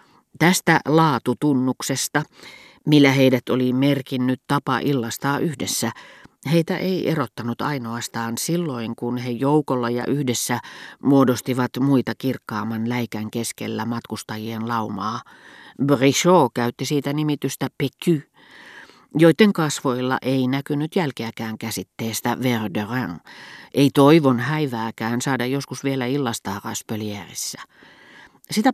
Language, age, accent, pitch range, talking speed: Finnish, 40-59, native, 120-145 Hz, 100 wpm